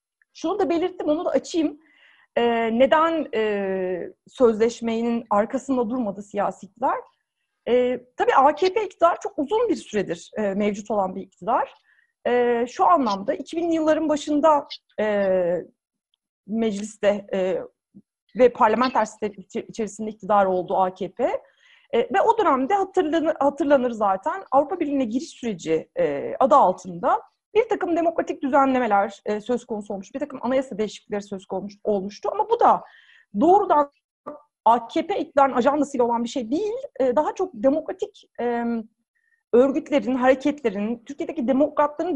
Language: Turkish